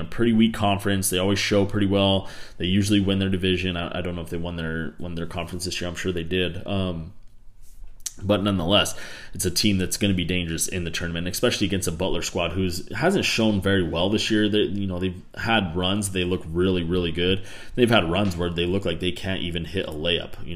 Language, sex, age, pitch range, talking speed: English, male, 30-49, 85-95 Hz, 235 wpm